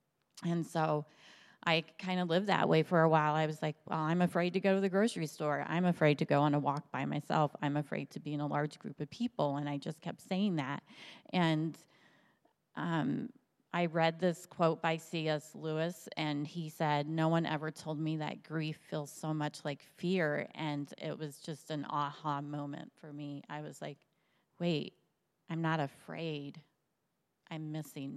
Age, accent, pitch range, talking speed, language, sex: 30-49, American, 150-170 Hz, 190 wpm, English, female